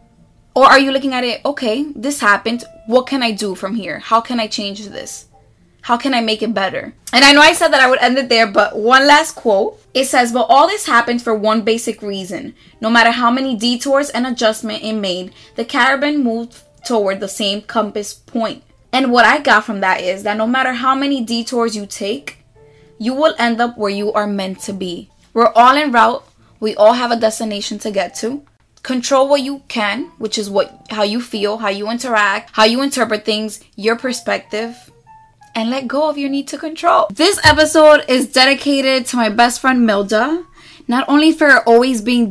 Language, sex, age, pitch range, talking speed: English, female, 20-39, 220-275 Hz, 205 wpm